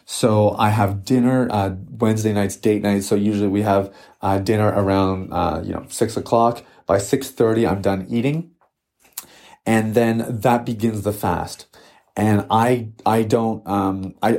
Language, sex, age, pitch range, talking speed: English, male, 30-49, 100-125 Hz, 160 wpm